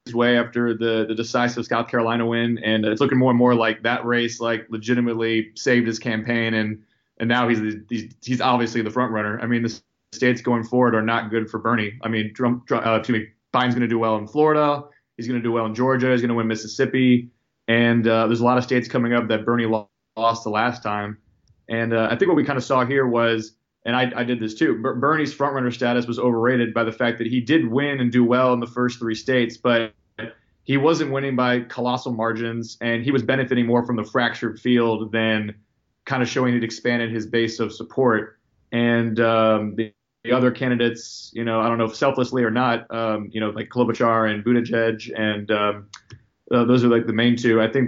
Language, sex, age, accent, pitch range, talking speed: English, male, 20-39, American, 110-125 Hz, 225 wpm